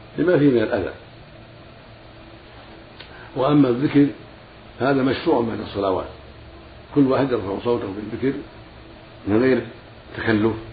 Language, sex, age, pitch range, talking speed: Arabic, male, 50-69, 105-120 Hz, 105 wpm